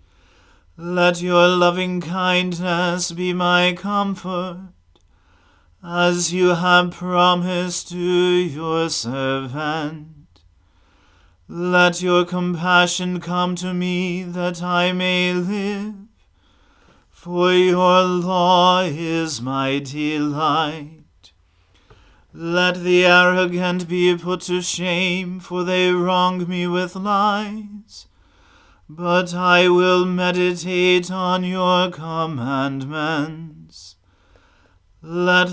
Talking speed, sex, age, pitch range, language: 85 wpm, male, 40-59, 150-180 Hz, English